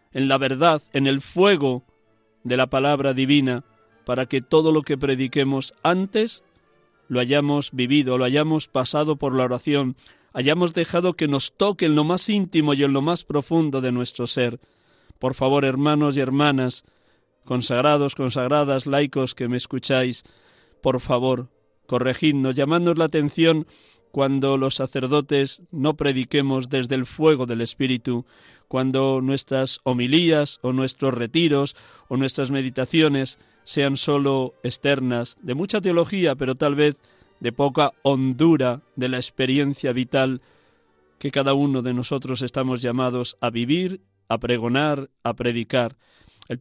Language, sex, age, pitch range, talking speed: Spanish, male, 40-59, 125-150 Hz, 140 wpm